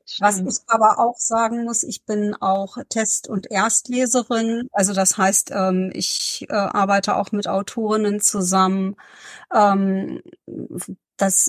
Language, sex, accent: German, female, German